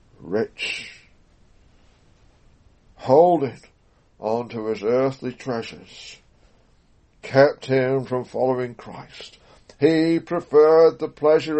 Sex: male